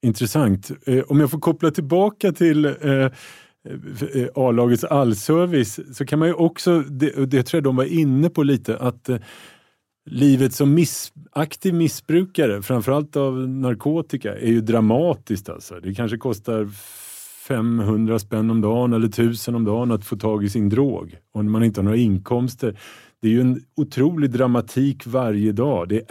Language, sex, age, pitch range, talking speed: Swedish, male, 30-49, 115-145 Hz, 170 wpm